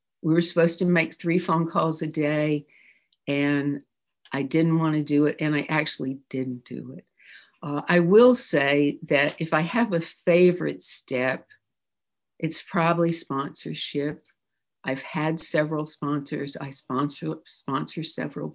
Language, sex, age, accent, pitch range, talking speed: English, female, 60-79, American, 145-165 Hz, 140 wpm